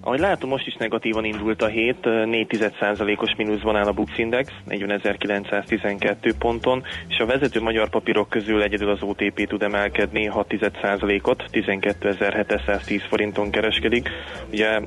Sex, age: male, 20-39